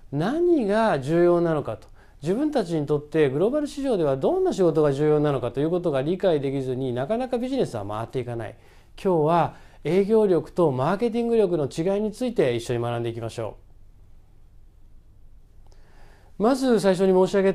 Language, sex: Japanese, male